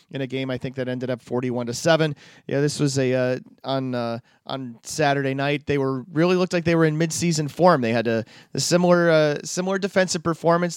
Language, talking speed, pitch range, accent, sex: English, 225 wpm, 130-160 Hz, American, male